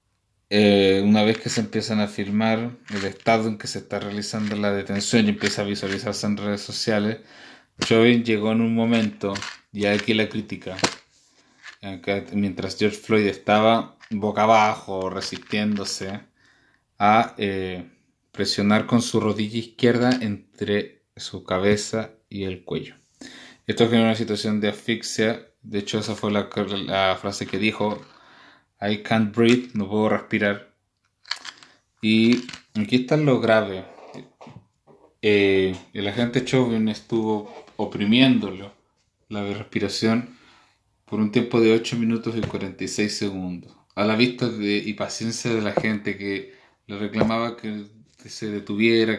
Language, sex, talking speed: Spanish, male, 135 wpm